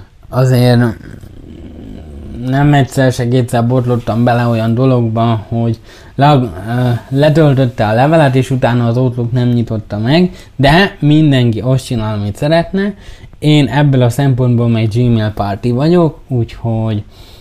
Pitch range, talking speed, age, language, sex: 110-135 Hz, 120 wpm, 20-39, Hungarian, male